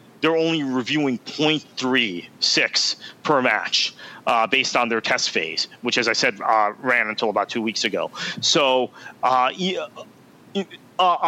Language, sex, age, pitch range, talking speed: English, male, 30-49, 115-155 Hz, 135 wpm